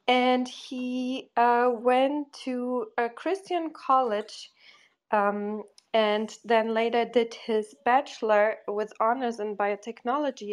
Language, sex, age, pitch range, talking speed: English, female, 20-39, 220-265 Hz, 110 wpm